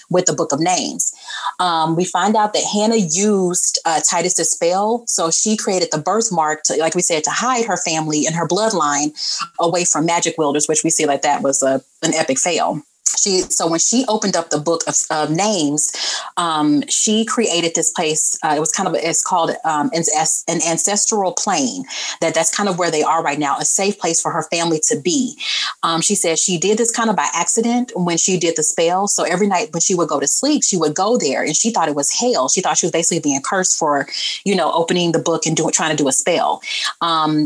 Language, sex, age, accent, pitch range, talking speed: English, female, 30-49, American, 155-200 Hz, 225 wpm